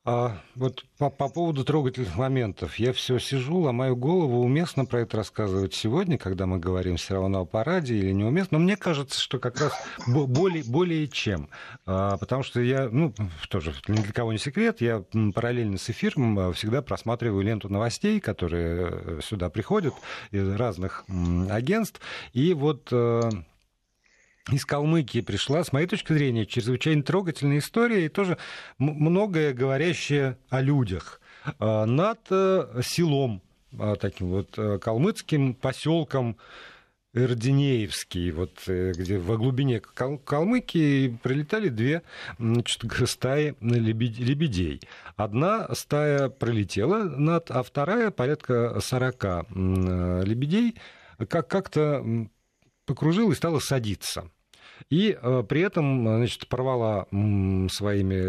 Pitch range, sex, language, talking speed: 105-150 Hz, male, Russian, 120 wpm